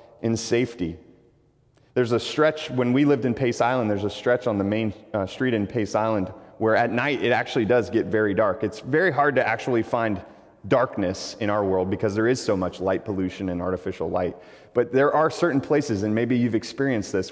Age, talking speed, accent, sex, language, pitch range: 30-49, 210 wpm, American, male, English, 110-150 Hz